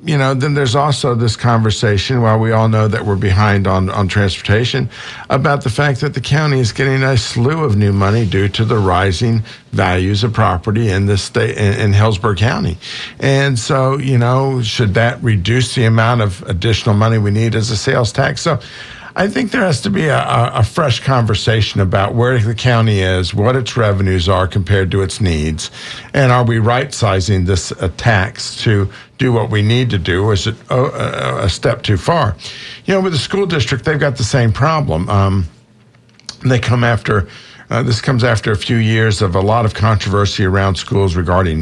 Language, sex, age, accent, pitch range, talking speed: English, male, 50-69, American, 100-125 Hz, 200 wpm